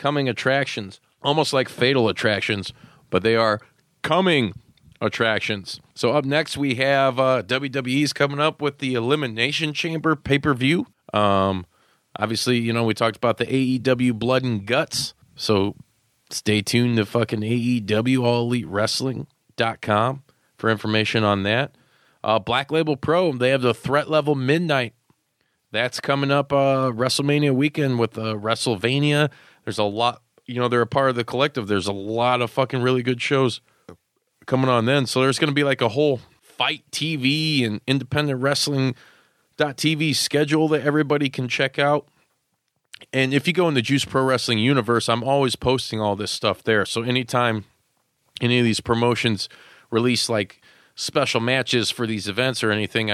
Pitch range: 115-140 Hz